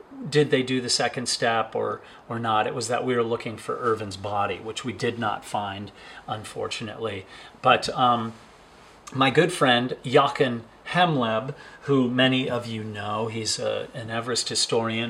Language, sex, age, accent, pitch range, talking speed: English, male, 40-59, American, 110-135 Hz, 160 wpm